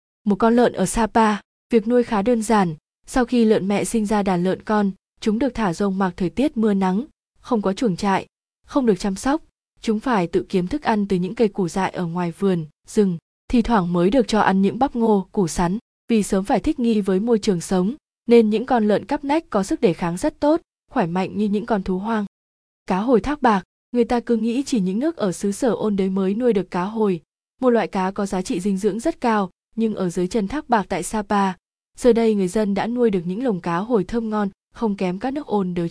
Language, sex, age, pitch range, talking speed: Vietnamese, female, 20-39, 190-235 Hz, 245 wpm